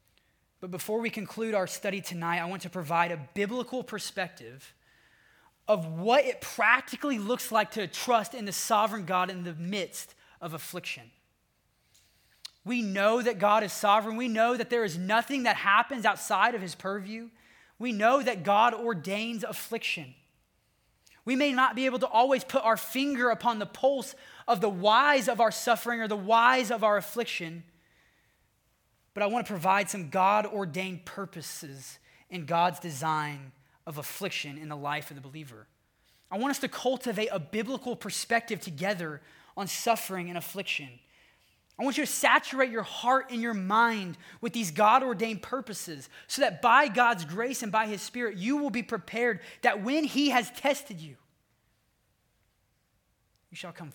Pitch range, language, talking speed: 165-235 Hz, English, 165 wpm